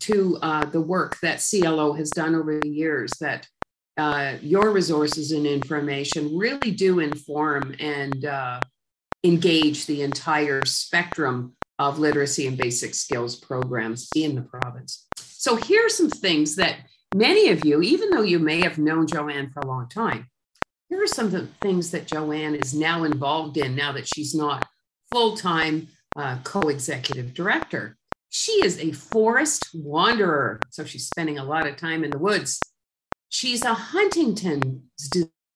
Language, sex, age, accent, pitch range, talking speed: English, female, 50-69, American, 145-195 Hz, 155 wpm